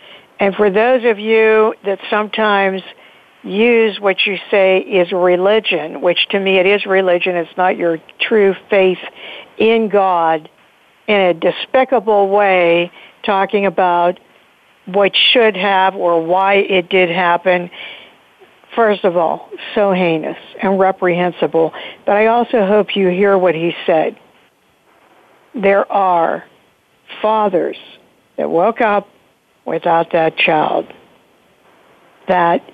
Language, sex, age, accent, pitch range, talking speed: English, female, 60-79, American, 185-225 Hz, 120 wpm